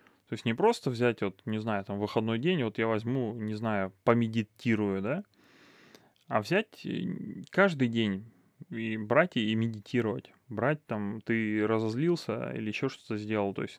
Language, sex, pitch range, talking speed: Russian, male, 105-120 Hz, 155 wpm